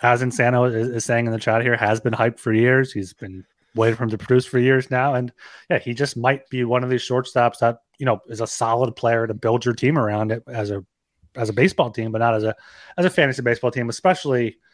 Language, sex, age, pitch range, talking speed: English, male, 30-49, 115-150 Hz, 255 wpm